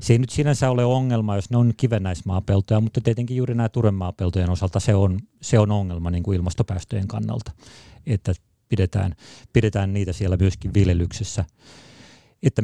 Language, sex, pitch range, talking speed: Finnish, male, 95-120 Hz, 155 wpm